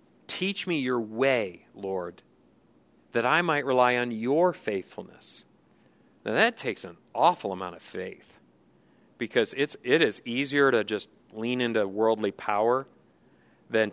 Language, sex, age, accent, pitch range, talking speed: English, male, 40-59, American, 115-160 Hz, 140 wpm